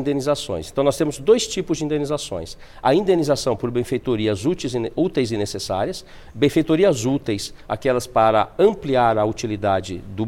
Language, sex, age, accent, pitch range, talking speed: English, male, 50-69, Brazilian, 120-165 Hz, 140 wpm